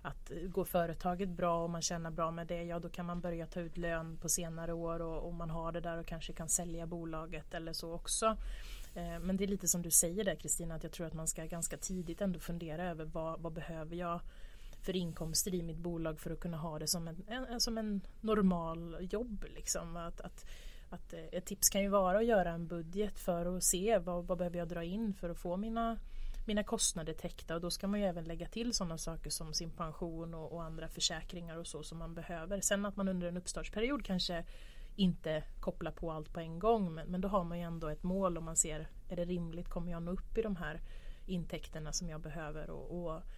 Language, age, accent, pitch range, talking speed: Swedish, 30-49, native, 165-185 Hz, 225 wpm